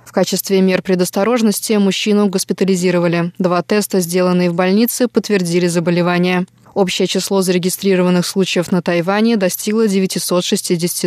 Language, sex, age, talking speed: Russian, female, 20-39, 115 wpm